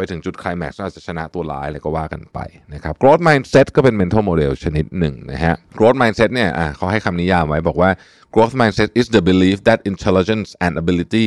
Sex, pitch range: male, 85-110 Hz